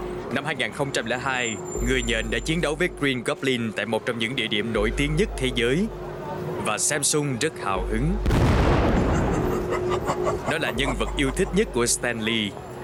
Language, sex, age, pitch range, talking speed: Vietnamese, male, 20-39, 105-140 Hz, 165 wpm